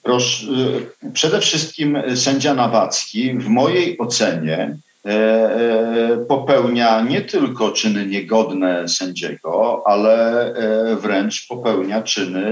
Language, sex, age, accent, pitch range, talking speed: Polish, male, 50-69, native, 95-125 Hz, 85 wpm